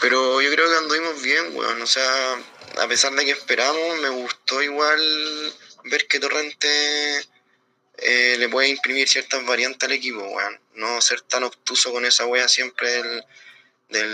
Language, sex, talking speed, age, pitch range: Spanish, male, 165 wpm, 20-39, 125-150 Hz